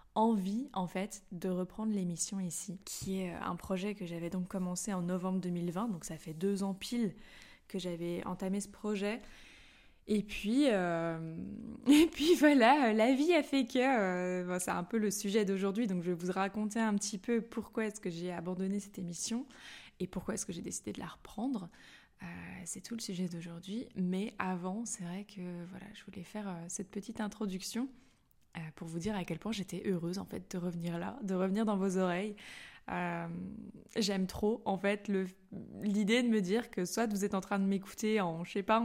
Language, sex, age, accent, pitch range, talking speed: French, female, 20-39, French, 180-215 Hz, 200 wpm